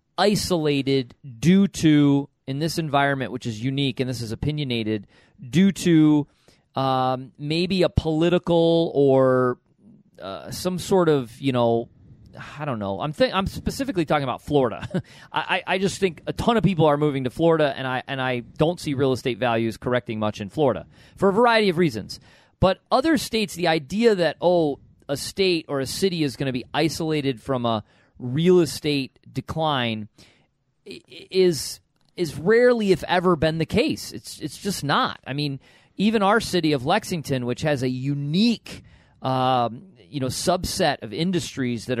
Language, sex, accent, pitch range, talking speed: English, male, American, 130-175 Hz, 170 wpm